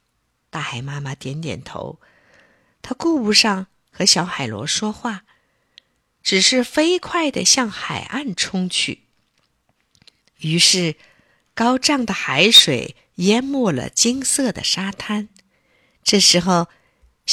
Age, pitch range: 50-69, 175-275 Hz